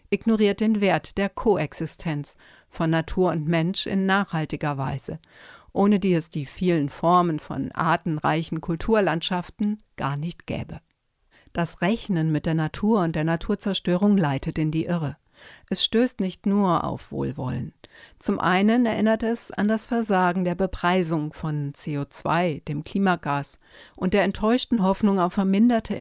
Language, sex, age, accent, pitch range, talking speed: German, female, 50-69, German, 165-200 Hz, 140 wpm